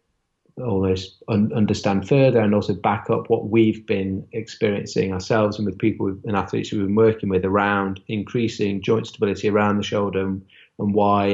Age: 30-49